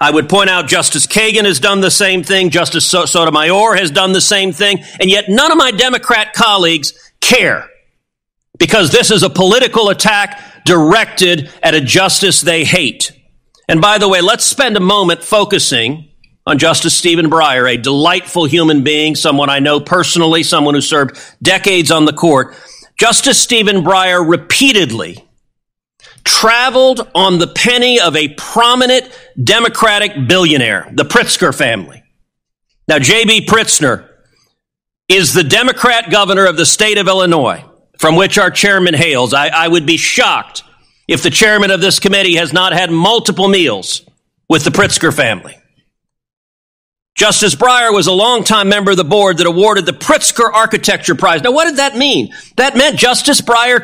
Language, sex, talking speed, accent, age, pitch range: English, male, 160 wpm, American, 40-59, 165-215 Hz